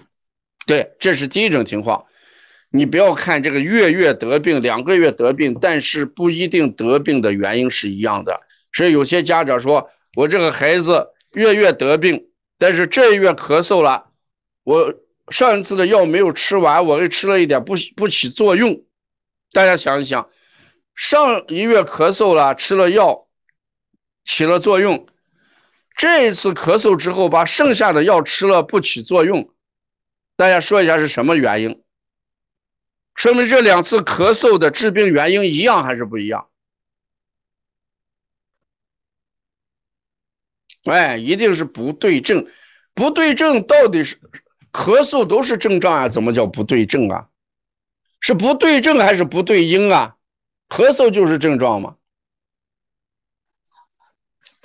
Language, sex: Chinese, male